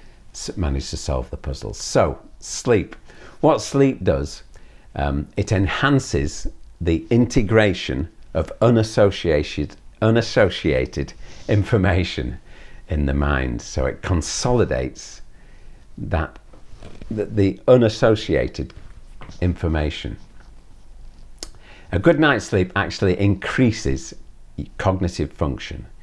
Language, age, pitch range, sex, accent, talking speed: English, 50-69, 75-110 Hz, male, British, 90 wpm